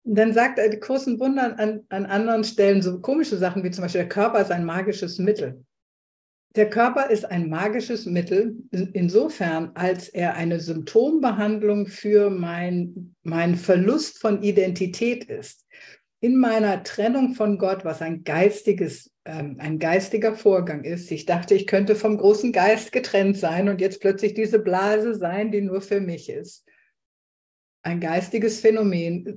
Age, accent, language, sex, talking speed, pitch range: 60-79, German, German, female, 150 wpm, 180-225 Hz